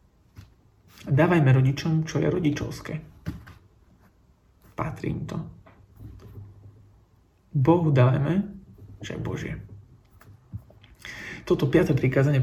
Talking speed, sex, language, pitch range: 70 wpm, male, Slovak, 110-150 Hz